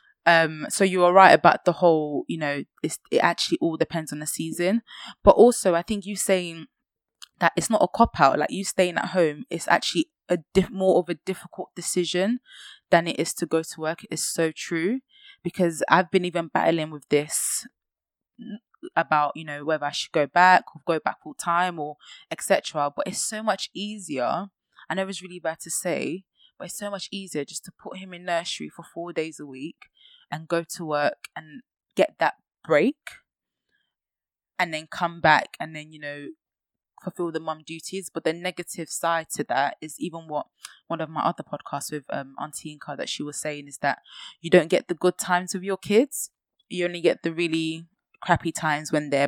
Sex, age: female, 20-39